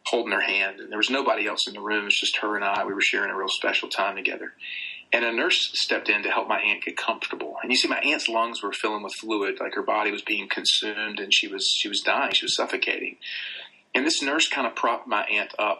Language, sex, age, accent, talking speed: English, male, 40-59, American, 260 wpm